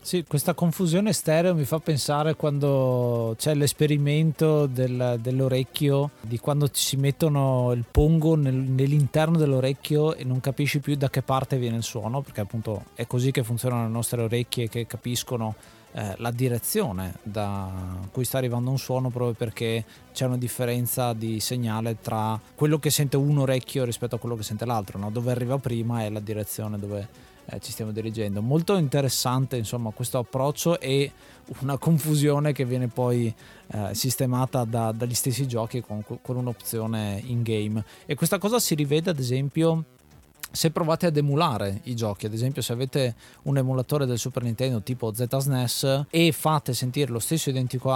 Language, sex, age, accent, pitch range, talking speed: Italian, male, 20-39, native, 115-140 Hz, 165 wpm